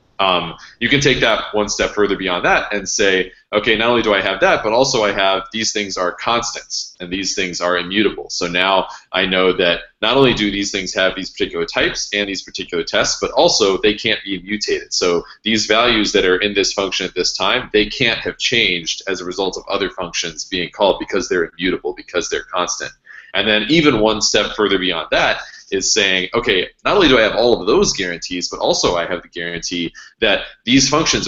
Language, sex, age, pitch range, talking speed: English, male, 20-39, 90-110 Hz, 220 wpm